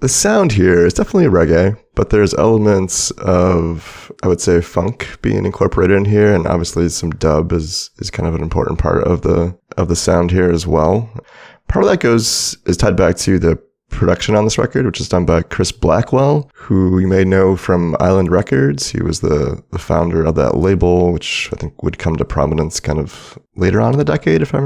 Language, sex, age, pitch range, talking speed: English, male, 30-49, 85-105 Hz, 210 wpm